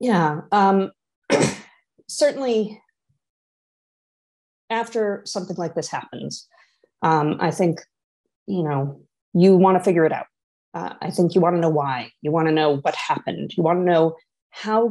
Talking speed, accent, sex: 155 wpm, American, female